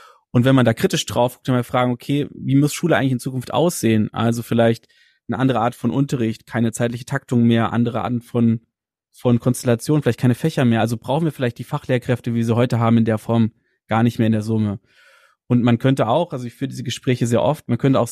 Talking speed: 240 wpm